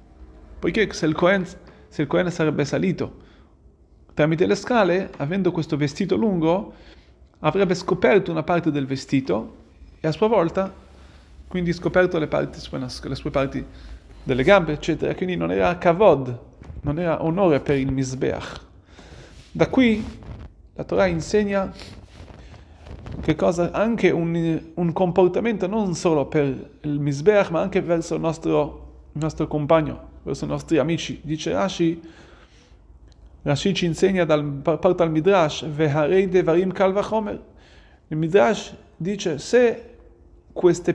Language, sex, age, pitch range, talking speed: Italian, male, 30-49, 135-180 Hz, 125 wpm